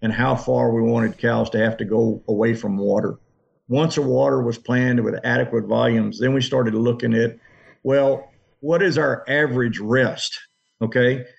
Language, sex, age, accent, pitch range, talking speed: English, male, 50-69, American, 120-140 Hz, 175 wpm